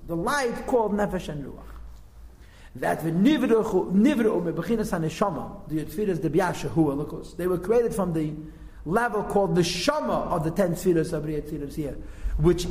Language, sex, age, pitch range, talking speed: English, male, 50-69, 155-215 Hz, 170 wpm